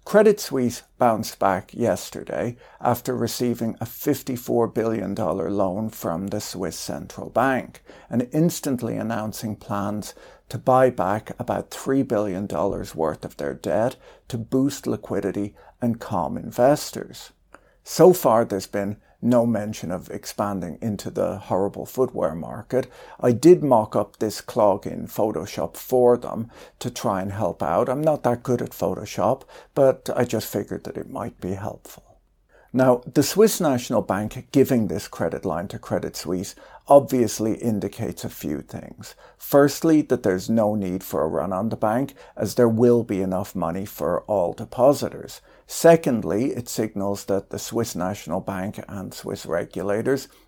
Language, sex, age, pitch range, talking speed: English, male, 60-79, 100-130 Hz, 155 wpm